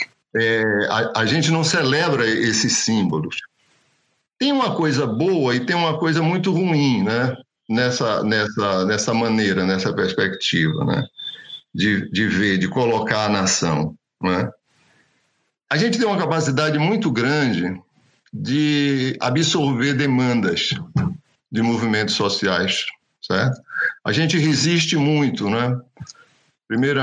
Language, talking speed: Portuguese, 120 wpm